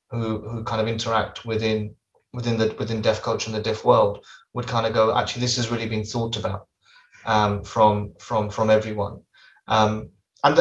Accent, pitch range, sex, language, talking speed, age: British, 110-120 Hz, male, English, 185 wpm, 20-39